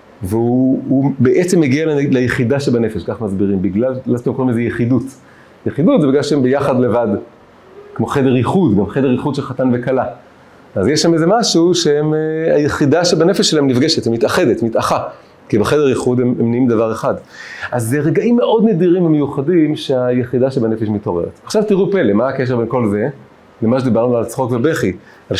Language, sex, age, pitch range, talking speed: Hebrew, male, 40-59, 115-160 Hz, 170 wpm